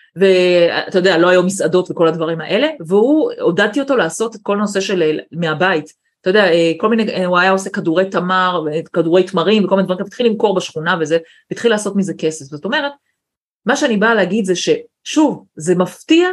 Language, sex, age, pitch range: Hebrew, female, 30-49, 180-245 Hz